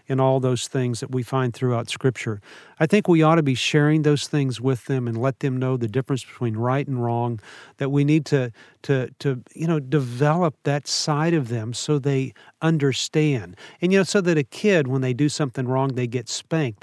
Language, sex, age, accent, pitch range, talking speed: English, male, 50-69, American, 130-160 Hz, 220 wpm